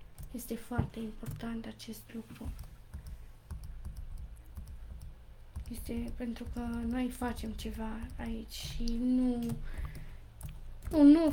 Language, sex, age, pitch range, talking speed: Romanian, female, 20-39, 220-250 Hz, 90 wpm